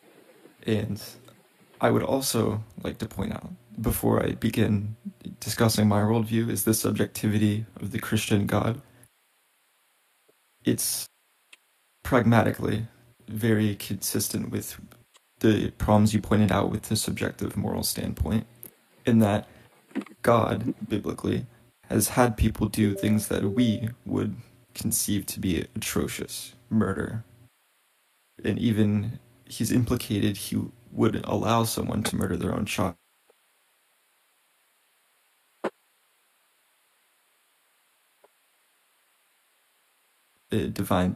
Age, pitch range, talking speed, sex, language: 20-39, 105-115 Hz, 100 wpm, male, English